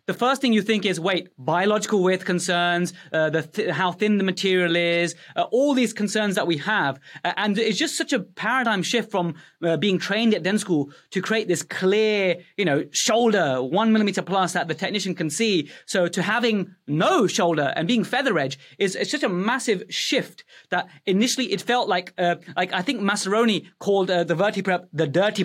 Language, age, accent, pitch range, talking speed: English, 30-49, British, 175-220 Hz, 205 wpm